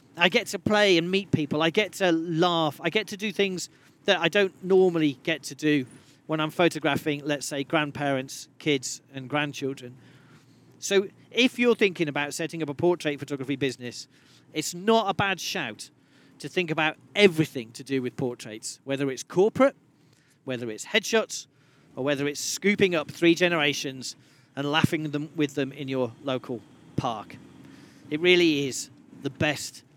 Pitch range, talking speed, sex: 135-175 Hz, 165 wpm, male